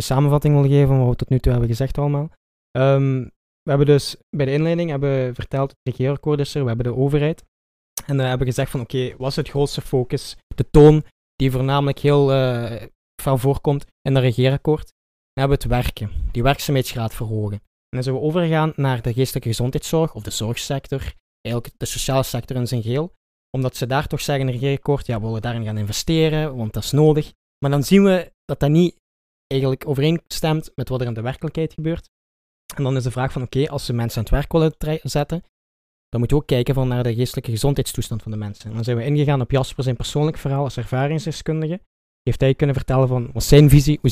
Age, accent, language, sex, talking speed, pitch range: 20-39, Dutch, Dutch, male, 220 wpm, 120-145 Hz